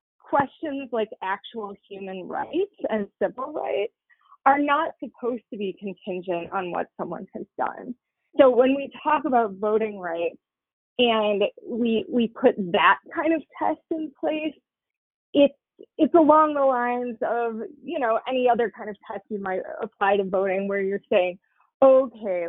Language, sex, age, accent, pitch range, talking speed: English, female, 20-39, American, 195-265 Hz, 155 wpm